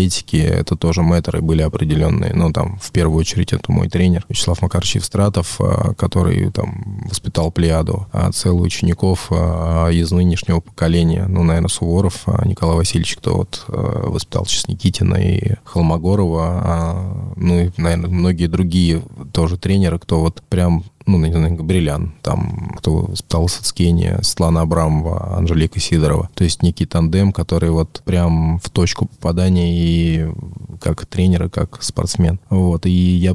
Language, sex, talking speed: English, male, 140 wpm